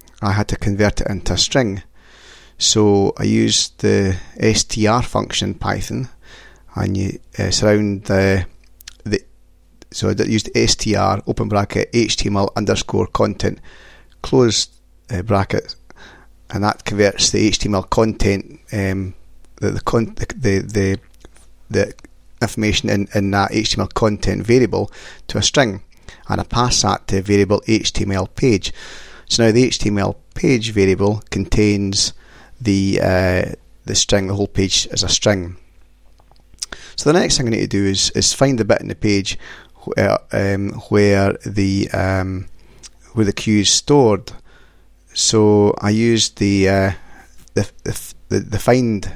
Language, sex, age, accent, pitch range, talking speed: English, male, 30-49, British, 95-110 Hz, 145 wpm